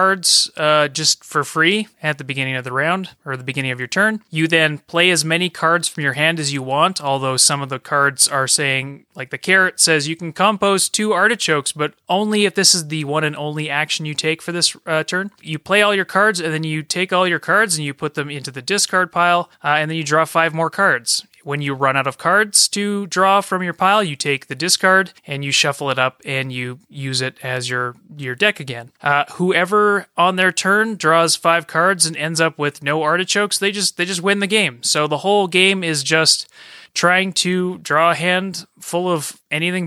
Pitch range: 145-185 Hz